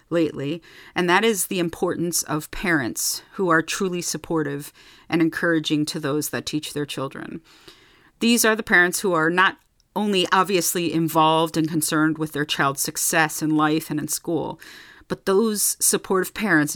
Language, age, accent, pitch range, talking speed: English, 40-59, American, 155-185 Hz, 160 wpm